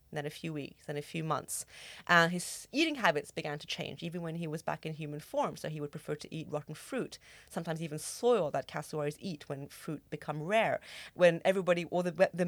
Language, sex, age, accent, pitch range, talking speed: English, female, 30-49, British, 155-200 Hz, 225 wpm